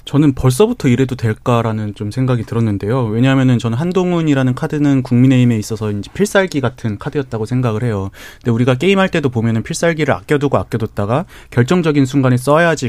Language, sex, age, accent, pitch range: Korean, male, 30-49, native, 115-145 Hz